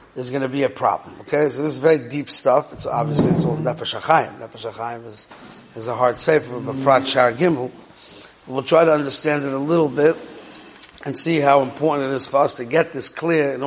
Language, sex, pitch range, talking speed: English, male, 130-155 Hz, 220 wpm